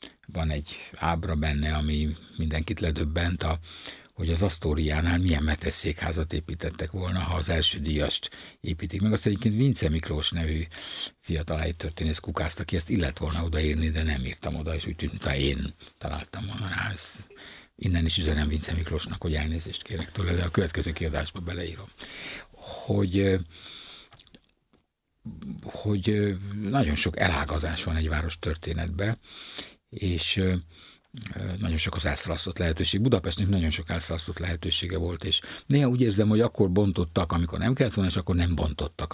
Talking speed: 145 wpm